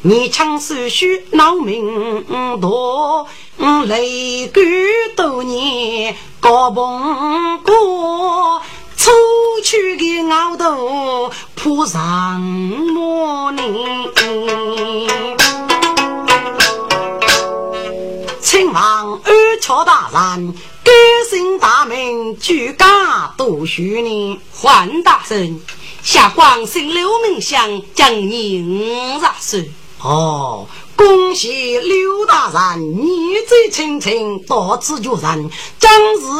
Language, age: Chinese, 40-59